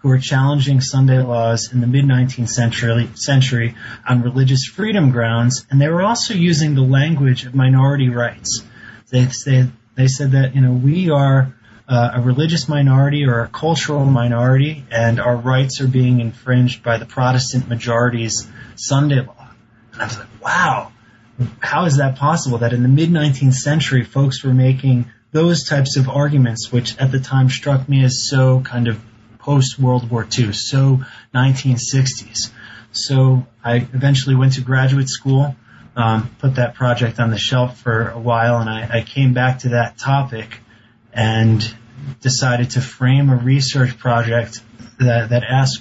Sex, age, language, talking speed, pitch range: male, 20-39, English, 160 wpm, 115-135 Hz